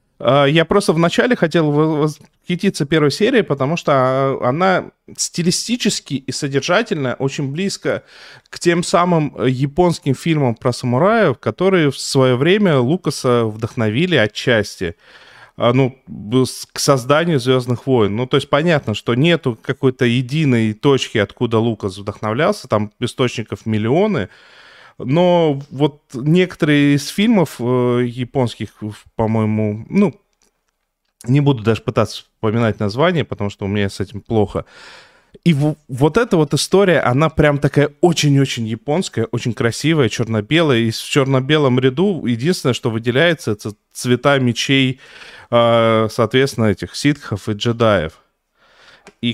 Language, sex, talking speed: Russian, male, 120 wpm